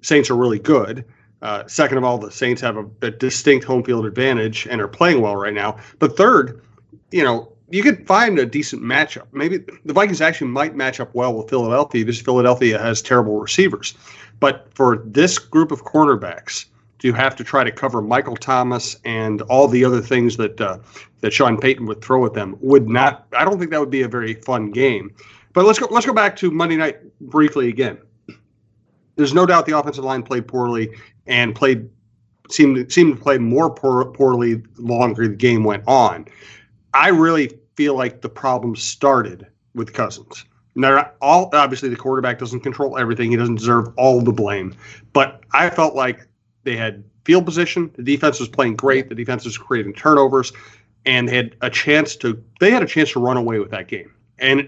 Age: 40-59